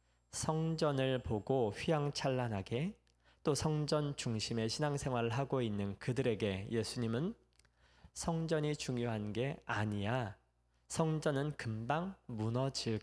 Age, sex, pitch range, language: 20-39, male, 100-140 Hz, Korean